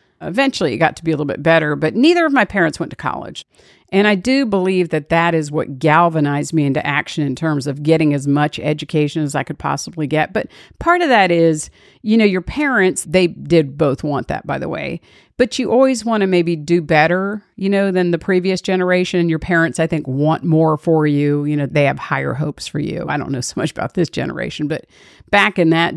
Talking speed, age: 230 wpm, 50-69